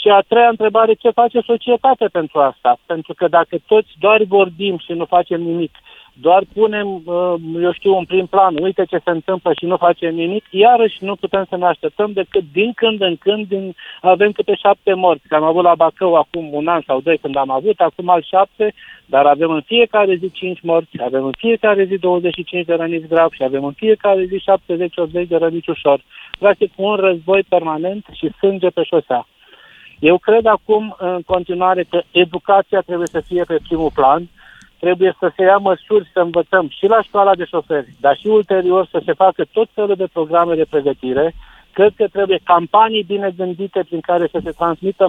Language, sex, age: Romanian, male, 50-69